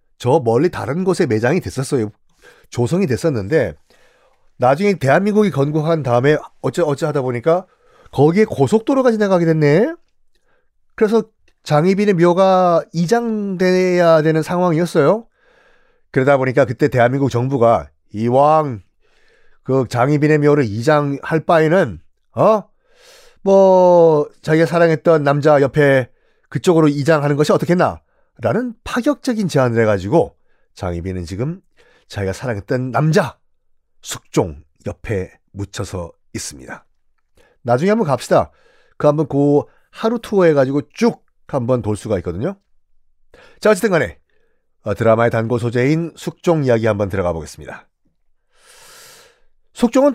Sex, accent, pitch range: male, native, 115-185 Hz